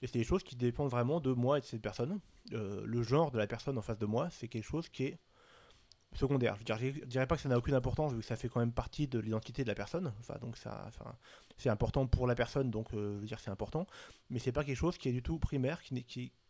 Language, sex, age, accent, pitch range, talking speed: French, male, 30-49, French, 110-135 Hz, 285 wpm